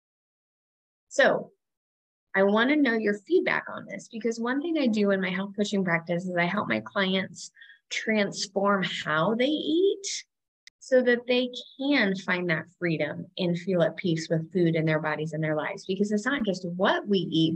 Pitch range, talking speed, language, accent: 180-230 Hz, 185 wpm, English, American